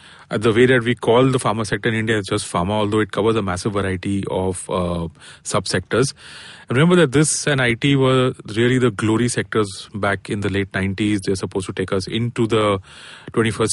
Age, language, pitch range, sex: 30-49, English, 100-125 Hz, male